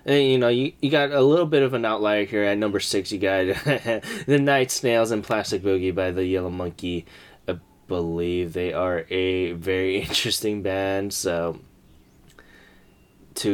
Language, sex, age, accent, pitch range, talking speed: English, male, 10-29, American, 90-105 Hz, 170 wpm